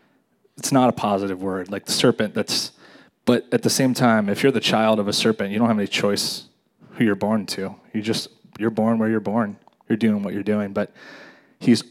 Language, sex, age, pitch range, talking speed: English, male, 30-49, 100-115 Hz, 220 wpm